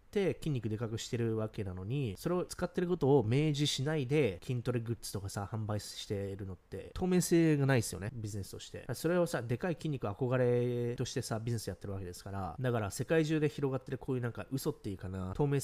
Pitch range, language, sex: 105-150 Hz, Japanese, male